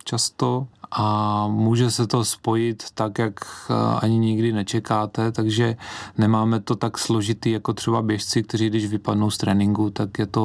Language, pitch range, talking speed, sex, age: Czech, 100-115 Hz, 155 wpm, male, 30-49